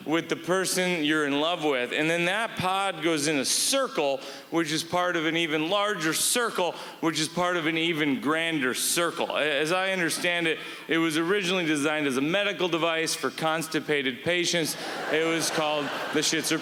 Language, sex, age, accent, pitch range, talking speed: English, male, 30-49, American, 155-190 Hz, 185 wpm